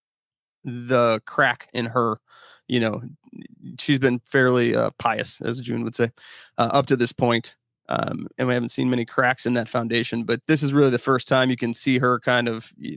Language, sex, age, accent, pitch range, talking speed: English, male, 30-49, American, 120-130 Hz, 205 wpm